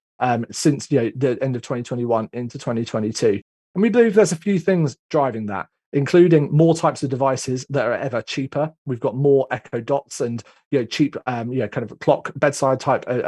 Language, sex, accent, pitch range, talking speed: English, male, British, 115-150 Hz, 210 wpm